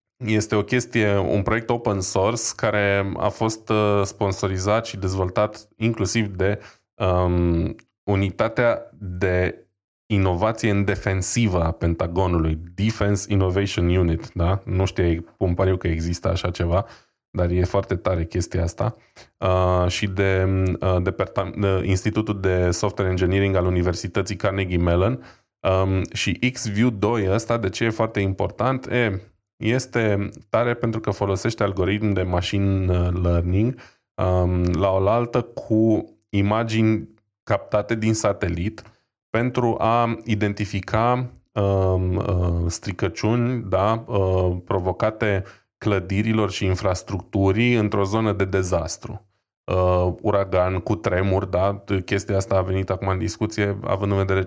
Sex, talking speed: male, 120 wpm